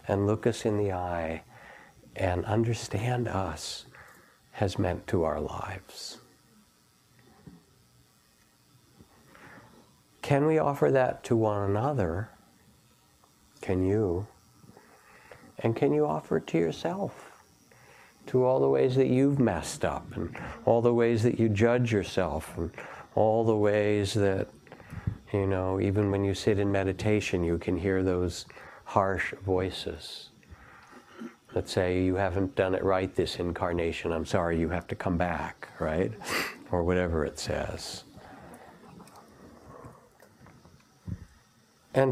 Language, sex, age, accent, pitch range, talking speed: English, male, 60-79, American, 90-110 Hz, 125 wpm